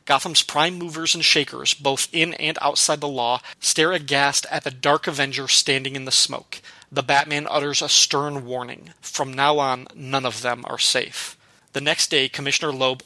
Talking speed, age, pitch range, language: 185 wpm, 30-49, 135-155 Hz, English